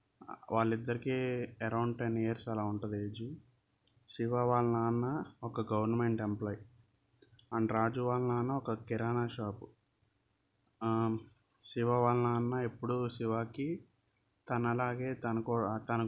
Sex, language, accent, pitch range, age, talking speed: male, Telugu, native, 110-120 Hz, 20-39, 105 wpm